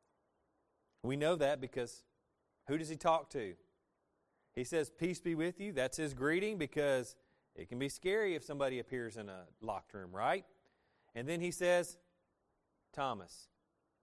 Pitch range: 110-155 Hz